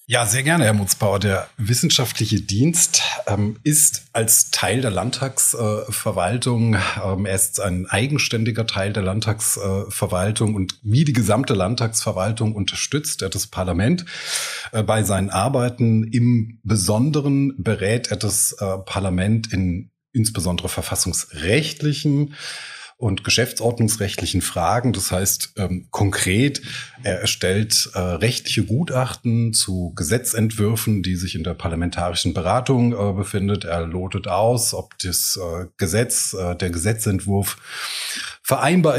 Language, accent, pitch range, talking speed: German, German, 95-125 Hz, 115 wpm